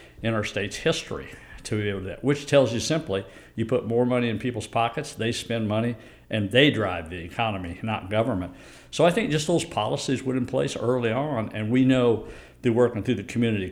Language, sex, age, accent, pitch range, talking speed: English, male, 60-79, American, 105-125 Hz, 215 wpm